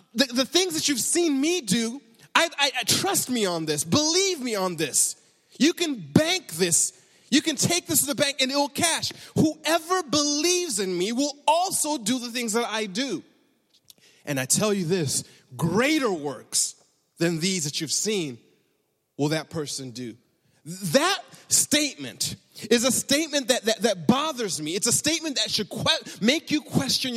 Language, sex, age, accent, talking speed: English, male, 30-49, American, 180 wpm